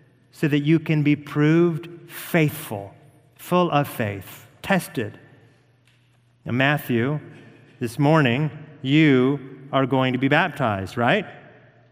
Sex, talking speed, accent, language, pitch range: male, 110 wpm, American, English, 135-190 Hz